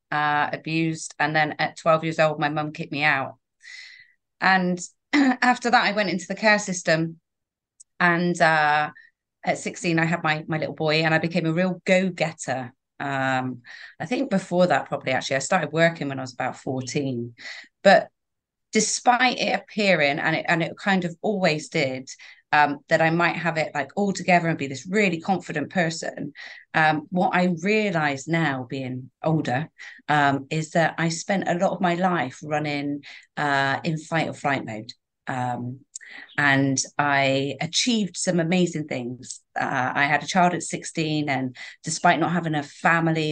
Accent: British